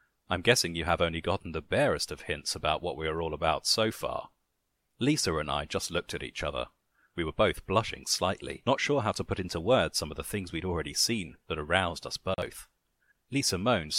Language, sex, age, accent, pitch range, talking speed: English, male, 40-59, British, 80-115 Hz, 220 wpm